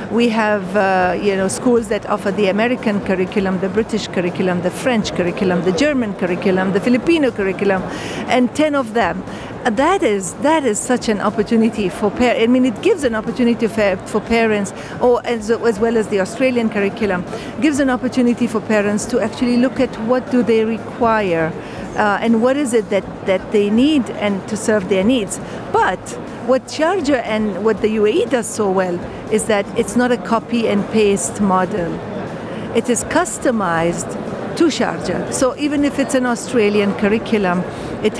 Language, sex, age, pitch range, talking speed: English, female, 50-69, 200-245 Hz, 175 wpm